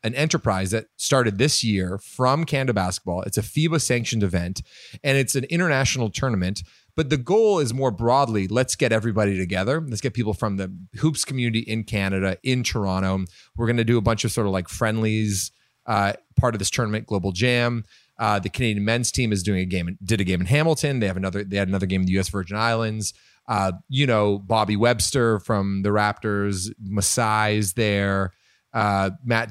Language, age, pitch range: English, 30-49, 100-125 Hz